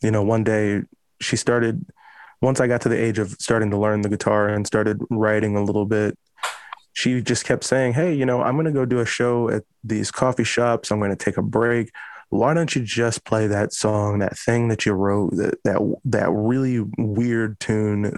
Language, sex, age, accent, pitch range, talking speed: English, male, 20-39, American, 105-120 Hz, 220 wpm